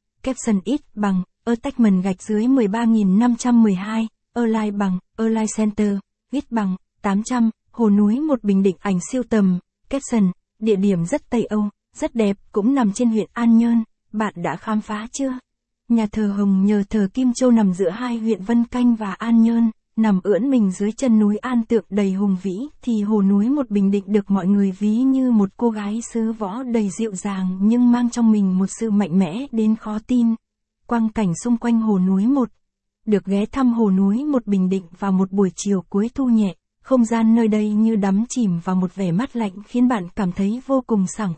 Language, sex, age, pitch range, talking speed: Vietnamese, female, 20-39, 200-235 Hz, 205 wpm